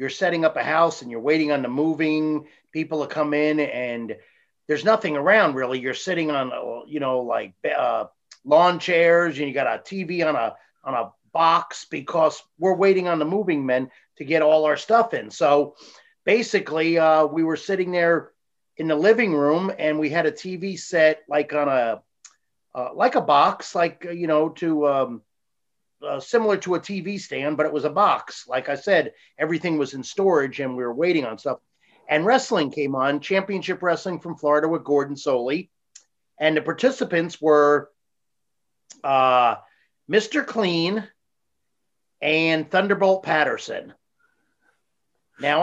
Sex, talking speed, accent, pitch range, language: male, 165 wpm, American, 150-190 Hz, English